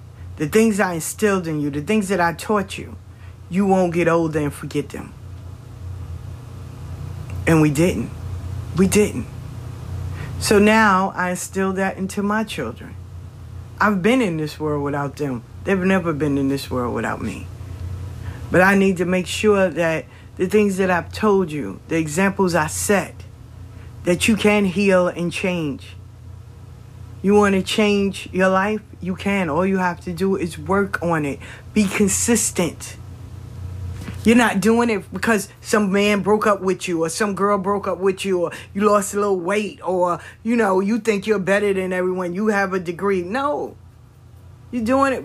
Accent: American